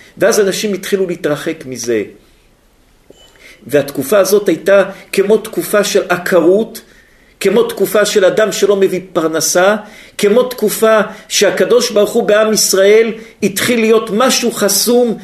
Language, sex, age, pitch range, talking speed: Hebrew, male, 50-69, 180-215 Hz, 120 wpm